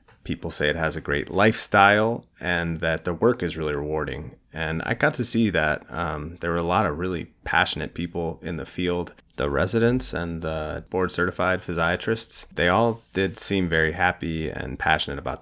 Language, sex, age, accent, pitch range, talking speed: English, male, 30-49, American, 80-95 Hz, 185 wpm